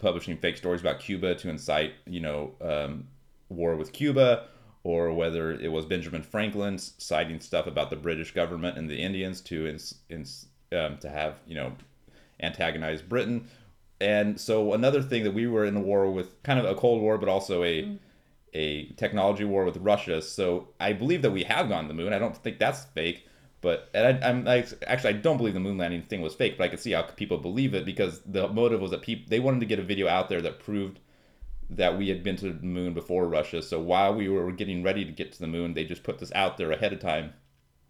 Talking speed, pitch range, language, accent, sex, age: 230 wpm, 80-115 Hz, English, American, male, 30-49